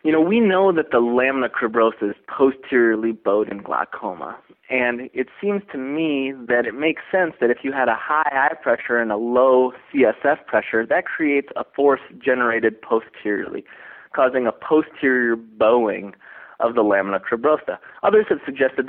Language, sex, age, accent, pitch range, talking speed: English, male, 20-39, American, 115-155 Hz, 165 wpm